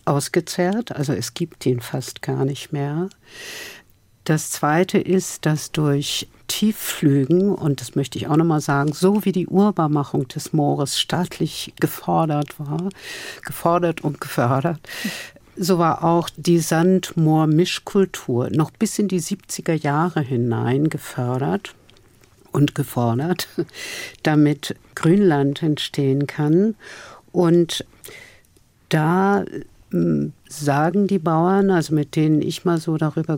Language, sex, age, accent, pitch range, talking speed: German, female, 60-79, German, 145-180 Hz, 120 wpm